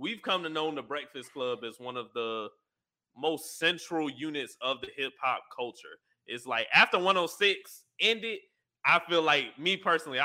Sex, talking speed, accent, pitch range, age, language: male, 170 wpm, American, 135-185 Hz, 20-39, English